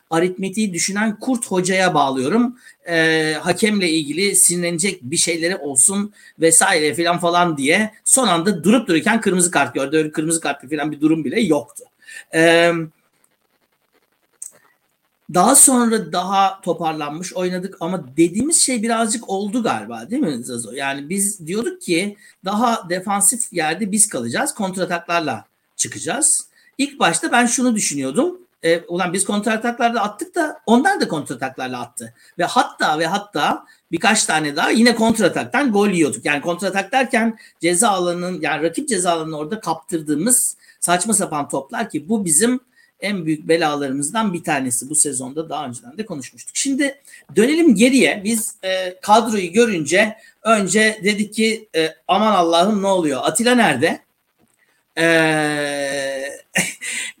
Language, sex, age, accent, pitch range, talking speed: Turkish, male, 60-79, native, 165-230 Hz, 130 wpm